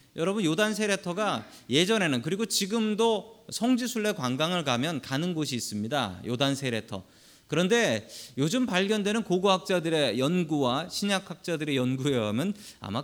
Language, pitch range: Korean, 130-205 Hz